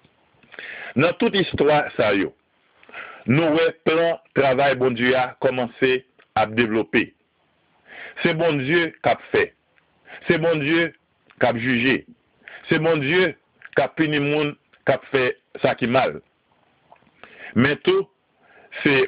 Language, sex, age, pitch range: French, male, 50-69, 125-160 Hz